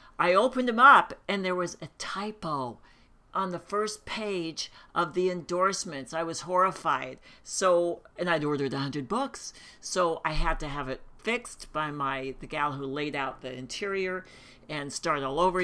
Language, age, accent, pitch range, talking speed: English, 60-79, American, 150-195 Hz, 175 wpm